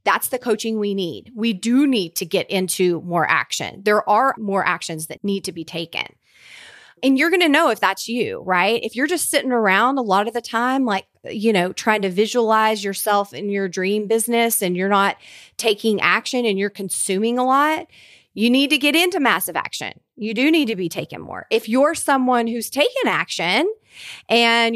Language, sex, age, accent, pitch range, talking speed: English, female, 30-49, American, 195-245 Hz, 200 wpm